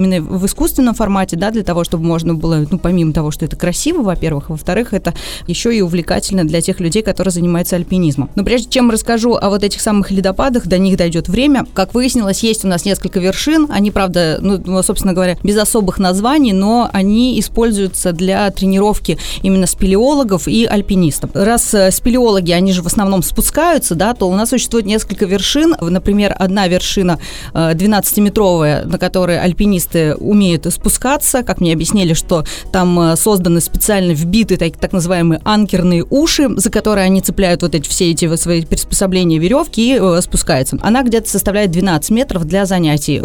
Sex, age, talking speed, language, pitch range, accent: female, 30-49, 170 wpm, Russian, 175-215 Hz, native